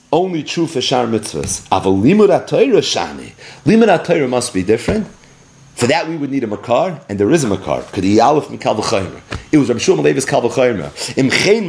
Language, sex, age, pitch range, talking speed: English, male, 40-59, 130-215 Hz, 150 wpm